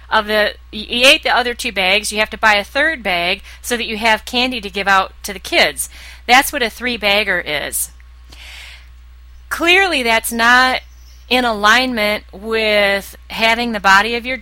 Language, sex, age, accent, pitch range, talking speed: English, female, 30-49, American, 195-250 Hz, 180 wpm